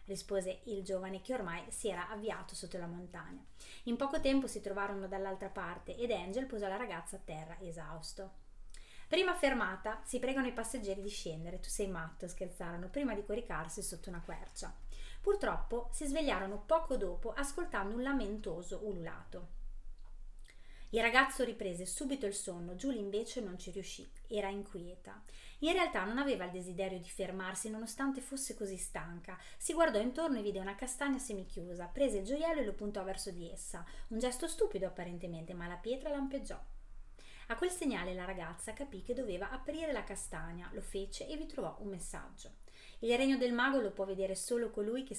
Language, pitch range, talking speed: Italian, 185-255 Hz, 175 wpm